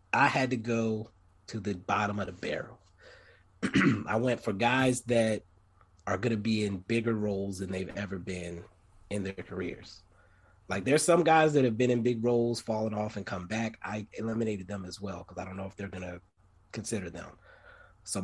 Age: 30-49